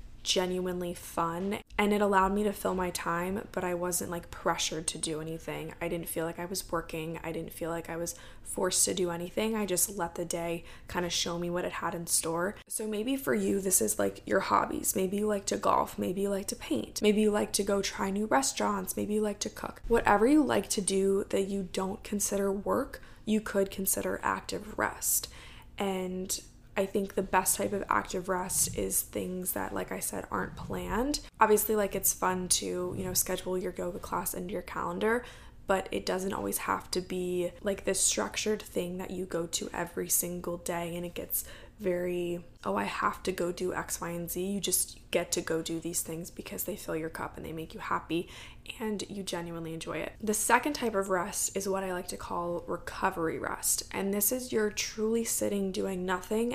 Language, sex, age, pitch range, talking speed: English, female, 20-39, 175-205 Hz, 215 wpm